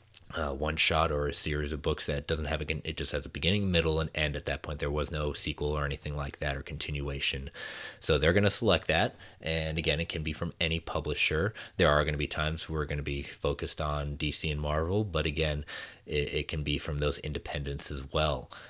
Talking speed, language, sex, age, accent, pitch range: 235 wpm, English, male, 30-49, American, 75-85 Hz